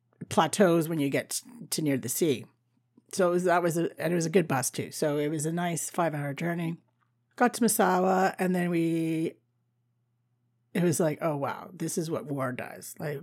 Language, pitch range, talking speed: English, 140-185 Hz, 205 wpm